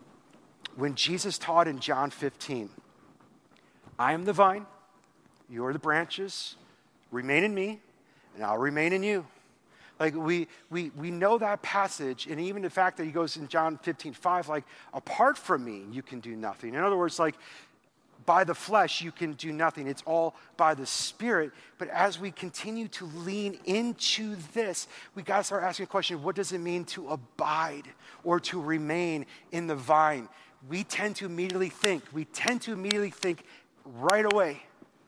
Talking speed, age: 175 wpm, 40-59